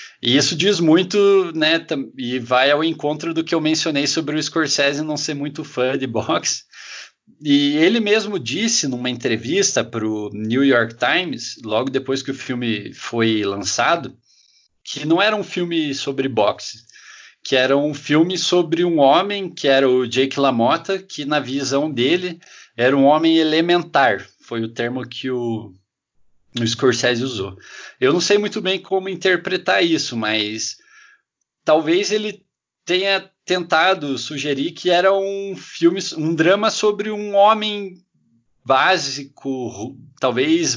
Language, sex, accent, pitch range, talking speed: Portuguese, male, Brazilian, 125-175 Hz, 145 wpm